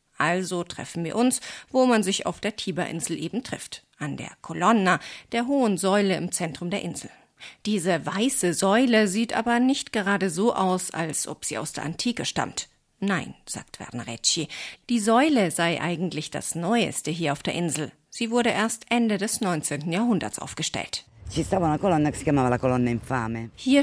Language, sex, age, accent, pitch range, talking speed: German, female, 50-69, German, 160-220 Hz, 150 wpm